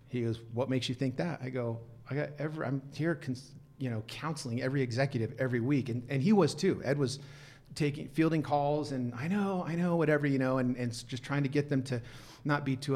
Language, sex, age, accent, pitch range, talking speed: English, male, 40-59, American, 125-150 Hz, 235 wpm